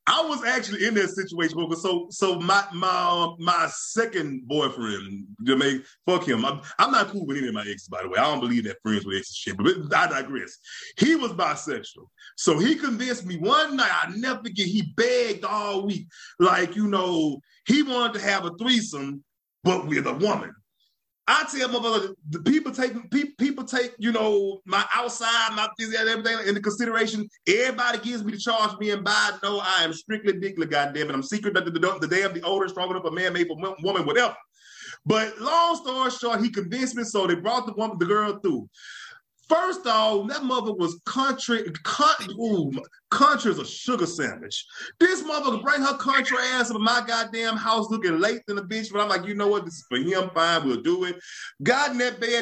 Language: English